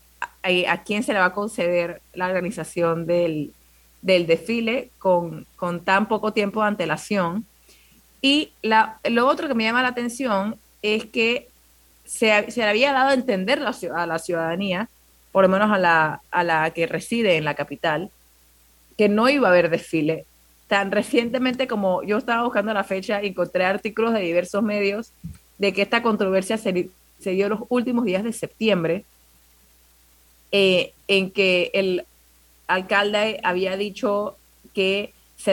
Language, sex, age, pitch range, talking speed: Spanish, female, 30-49, 170-215 Hz, 160 wpm